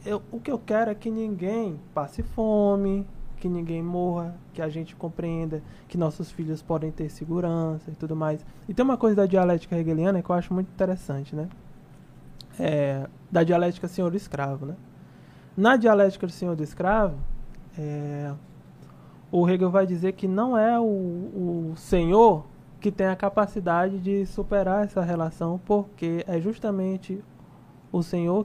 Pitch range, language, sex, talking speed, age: 170-210 Hz, Portuguese, male, 160 wpm, 20-39